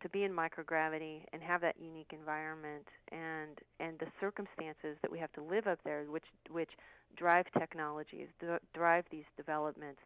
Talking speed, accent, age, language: 160 wpm, American, 40-59, English